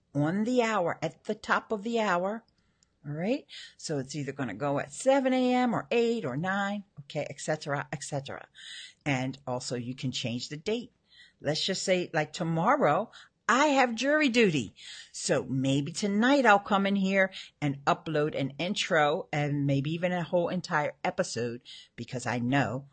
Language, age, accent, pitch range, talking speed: English, 50-69, American, 135-210 Hz, 165 wpm